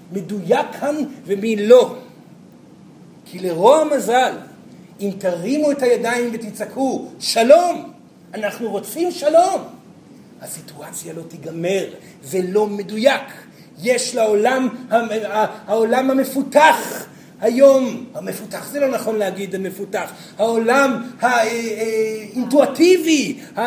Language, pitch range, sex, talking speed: Hebrew, 215-270 Hz, male, 90 wpm